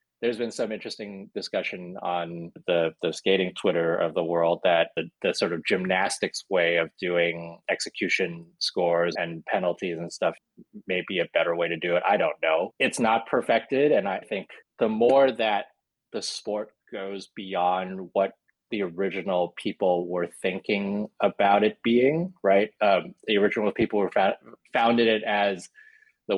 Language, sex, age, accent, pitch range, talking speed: English, male, 30-49, American, 90-110 Hz, 165 wpm